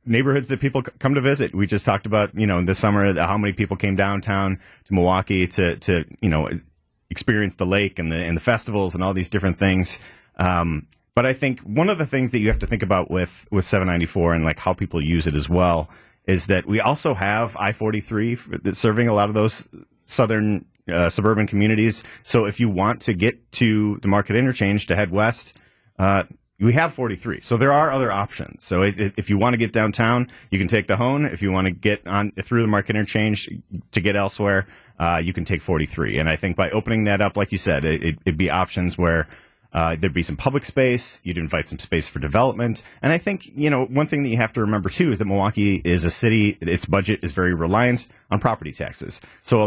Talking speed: 225 wpm